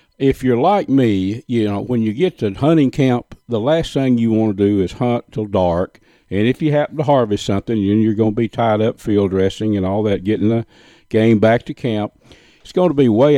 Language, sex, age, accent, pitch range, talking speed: English, male, 50-69, American, 100-125 Hz, 240 wpm